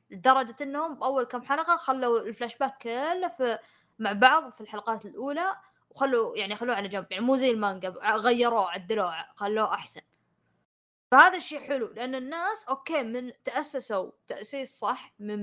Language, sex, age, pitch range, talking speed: Arabic, female, 20-39, 210-265 Hz, 150 wpm